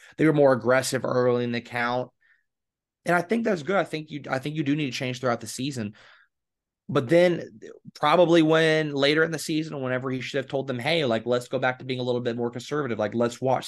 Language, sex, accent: English, male, American